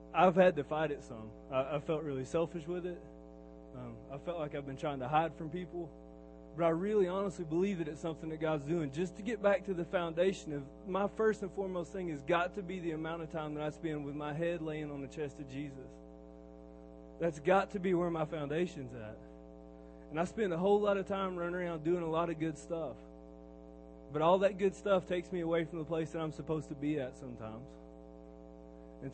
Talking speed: 230 wpm